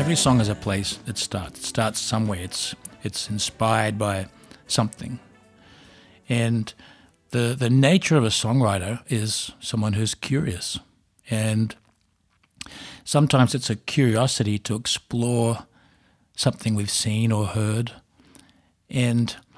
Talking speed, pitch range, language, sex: 120 wpm, 105-125 Hz, English, male